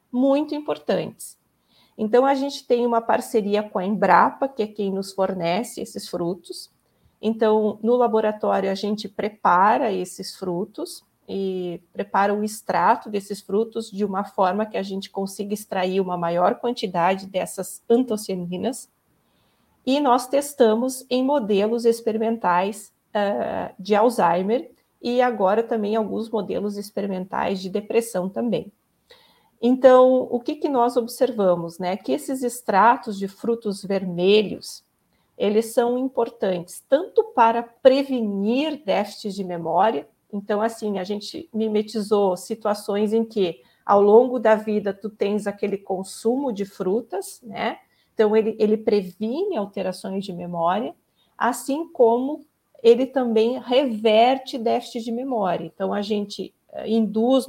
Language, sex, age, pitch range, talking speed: Portuguese, female, 40-59, 195-240 Hz, 125 wpm